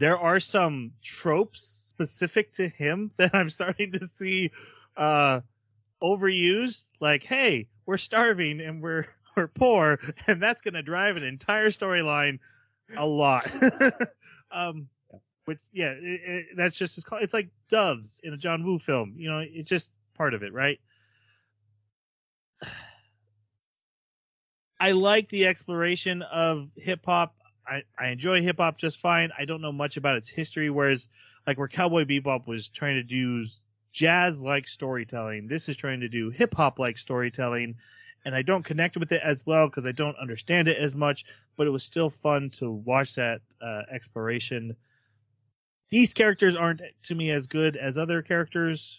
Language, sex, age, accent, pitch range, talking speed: English, male, 30-49, American, 120-175 Hz, 165 wpm